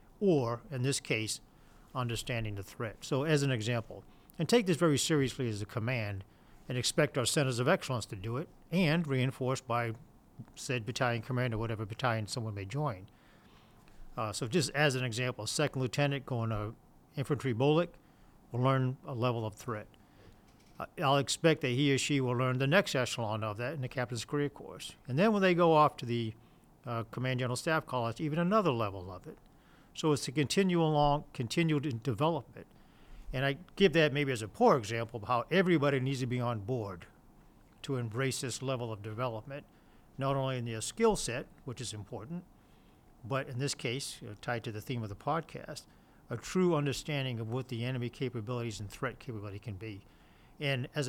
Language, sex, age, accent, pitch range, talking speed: English, male, 50-69, American, 115-145 Hz, 190 wpm